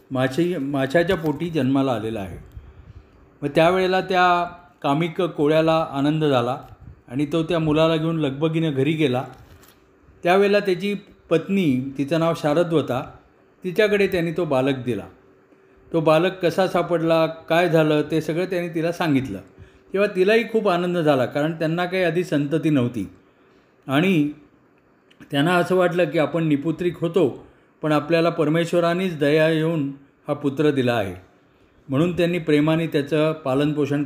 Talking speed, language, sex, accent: 95 wpm, Marathi, male, native